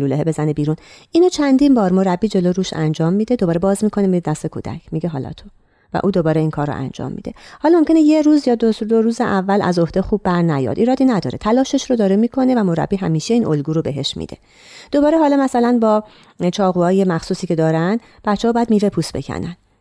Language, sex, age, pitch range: Persian, female, 30-49, 160-235 Hz